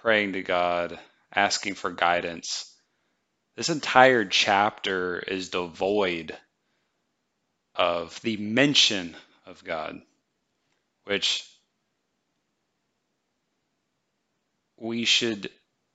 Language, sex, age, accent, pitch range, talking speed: English, male, 30-49, American, 90-110 Hz, 70 wpm